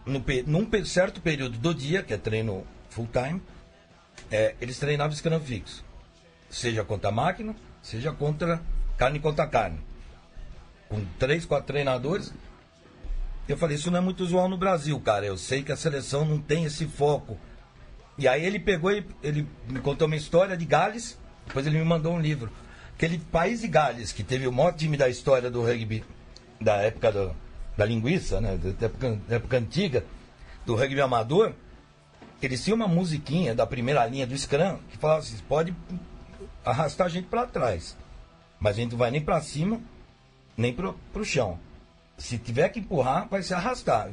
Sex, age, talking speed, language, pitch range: male, 60-79, 175 wpm, Portuguese, 110-170 Hz